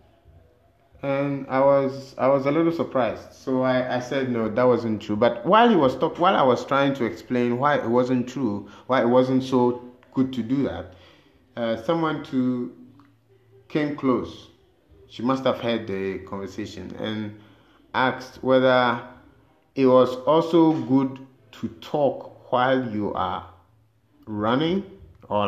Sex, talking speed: male, 150 wpm